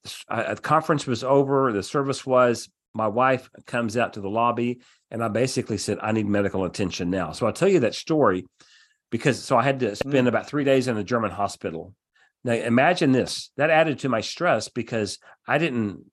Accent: American